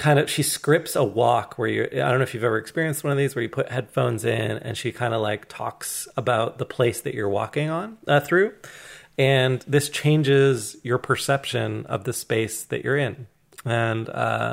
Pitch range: 115-145 Hz